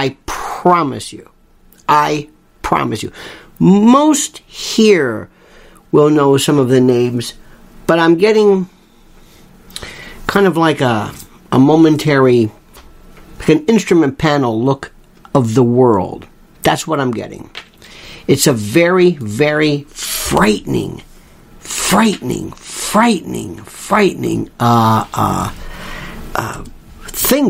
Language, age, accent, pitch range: English, 50-69, American, 135-210 Hz